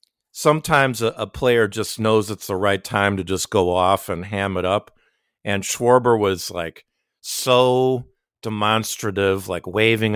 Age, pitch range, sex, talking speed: 50-69, 100-130 Hz, male, 150 wpm